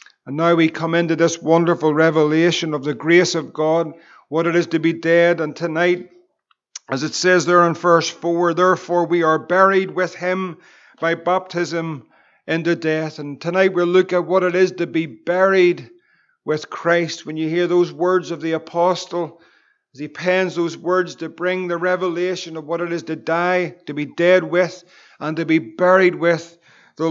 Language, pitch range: English, 165-180 Hz